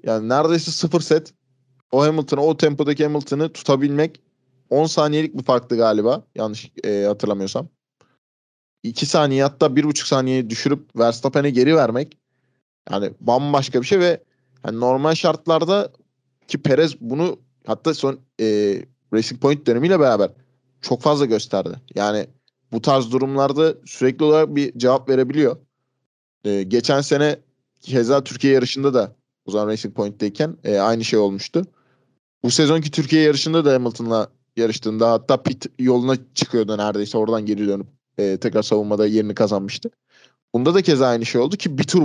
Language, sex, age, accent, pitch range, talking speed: Turkish, male, 20-39, native, 110-150 Hz, 140 wpm